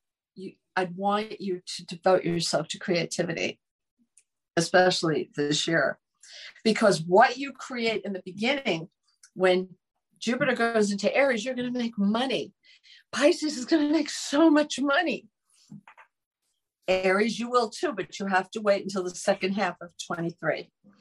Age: 50-69